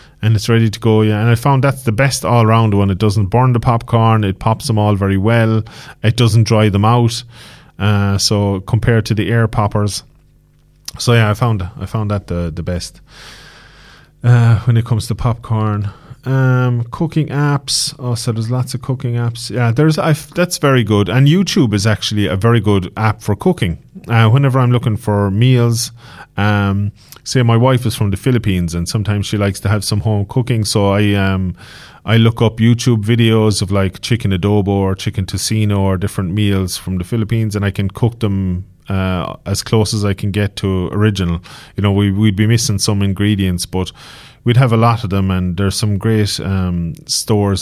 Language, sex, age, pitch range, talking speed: English, male, 30-49, 95-120 Hz, 200 wpm